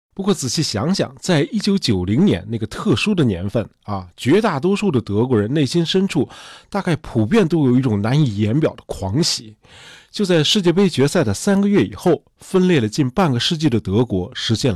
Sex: male